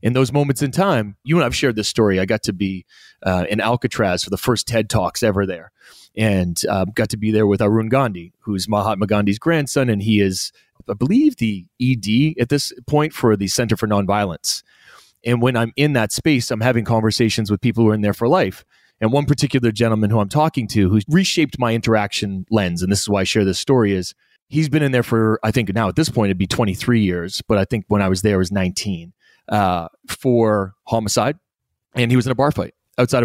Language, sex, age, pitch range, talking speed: English, male, 30-49, 100-130 Hz, 235 wpm